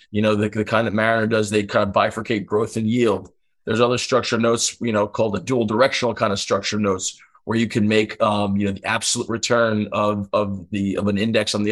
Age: 20-39